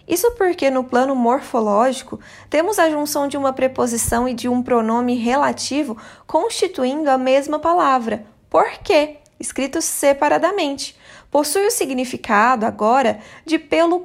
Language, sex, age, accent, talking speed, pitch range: Portuguese, female, 20-39, Brazilian, 130 wpm, 235-305 Hz